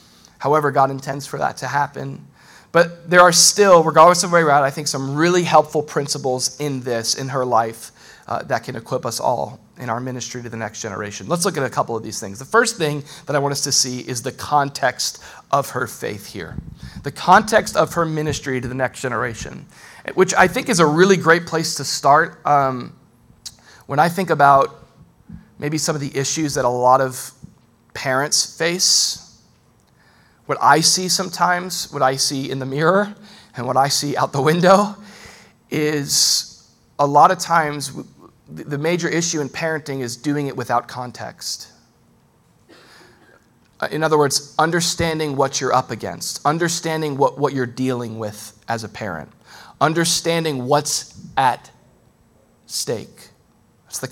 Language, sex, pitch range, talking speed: English, male, 130-165 Hz, 170 wpm